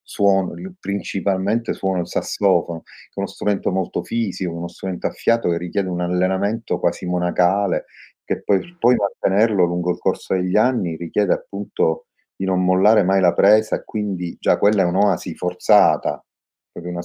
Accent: native